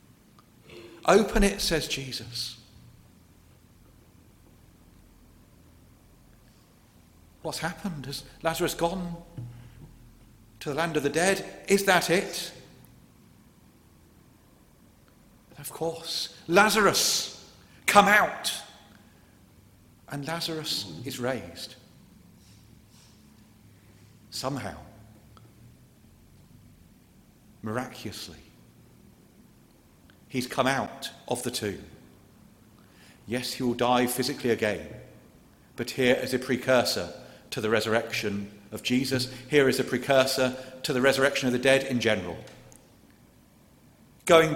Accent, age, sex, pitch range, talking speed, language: British, 50-69, male, 110-150 Hz, 85 wpm, English